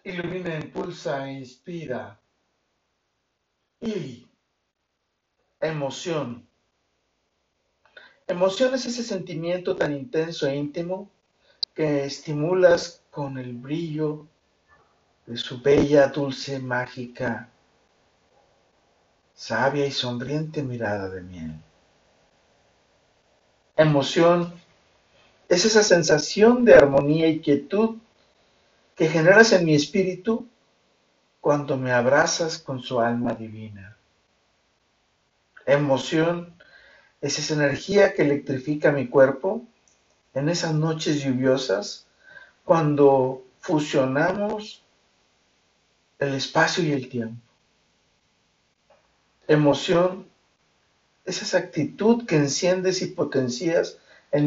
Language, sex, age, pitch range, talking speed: Spanish, male, 50-69, 135-175 Hz, 85 wpm